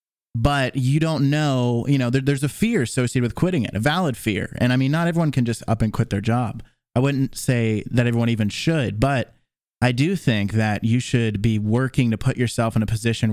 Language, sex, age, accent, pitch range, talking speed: English, male, 30-49, American, 115-145 Hz, 225 wpm